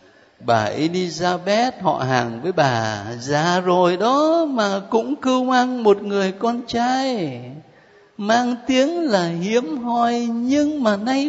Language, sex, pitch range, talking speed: Vietnamese, male, 150-230 Hz, 135 wpm